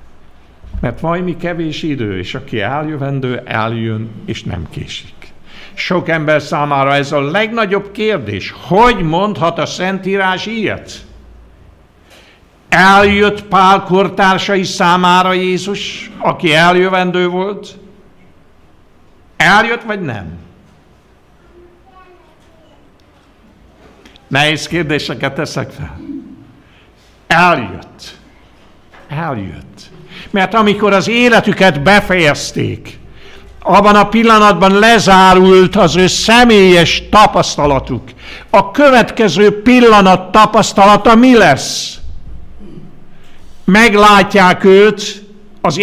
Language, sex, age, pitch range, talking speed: Hungarian, male, 60-79, 135-205 Hz, 80 wpm